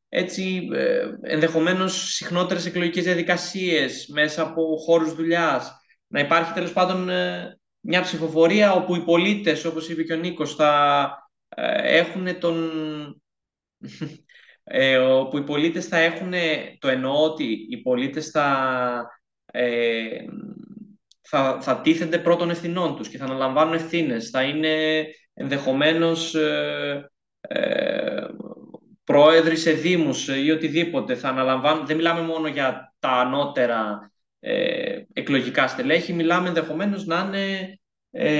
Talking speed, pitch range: 120 wpm, 155-190 Hz